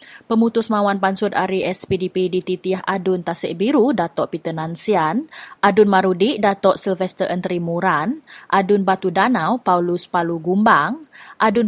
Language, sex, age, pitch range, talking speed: English, female, 20-39, 175-210 Hz, 130 wpm